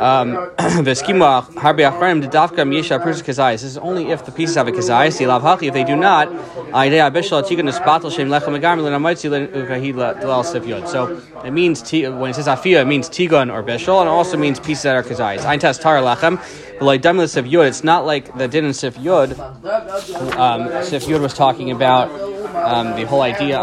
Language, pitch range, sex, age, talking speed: English, 125-165 Hz, male, 20-39, 130 wpm